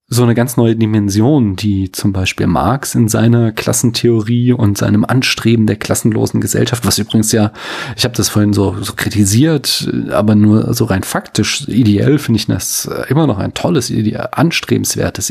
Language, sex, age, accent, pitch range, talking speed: German, male, 30-49, German, 105-125 Hz, 170 wpm